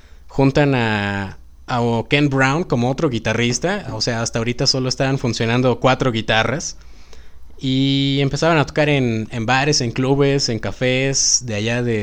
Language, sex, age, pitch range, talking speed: Spanish, male, 20-39, 110-145 Hz, 155 wpm